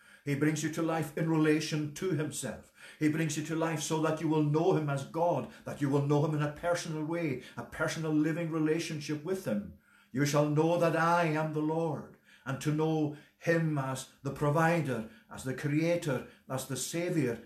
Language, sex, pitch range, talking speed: English, male, 120-160 Hz, 200 wpm